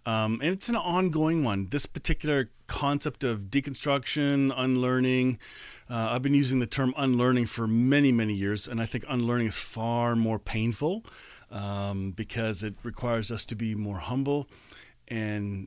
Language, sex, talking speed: English, male, 155 wpm